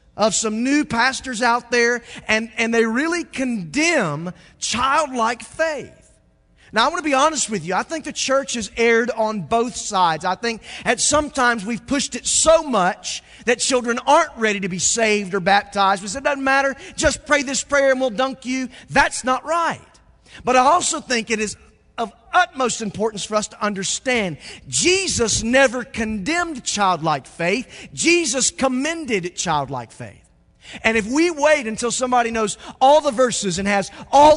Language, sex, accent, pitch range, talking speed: English, male, American, 200-270 Hz, 170 wpm